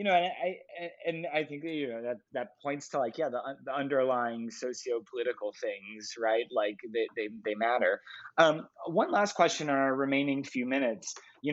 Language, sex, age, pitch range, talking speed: English, male, 20-39, 115-140 Hz, 195 wpm